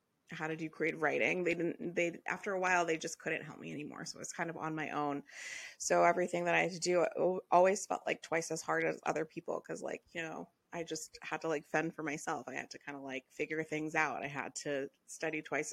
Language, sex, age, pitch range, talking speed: English, female, 20-39, 155-175 Hz, 255 wpm